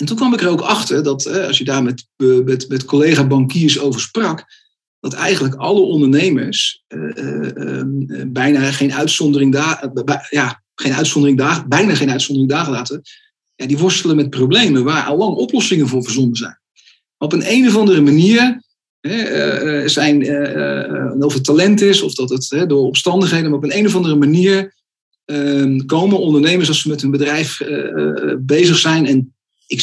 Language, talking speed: Dutch, 175 wpm